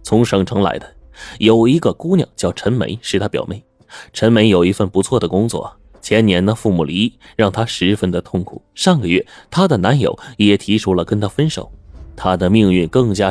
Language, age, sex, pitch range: Chinese, 20-39, male, 95-130 Hz